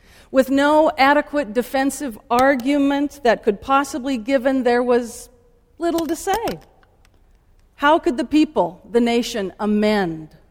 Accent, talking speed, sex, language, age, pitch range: American, 125 wpm, female, English, 50-69, 190-250 Hz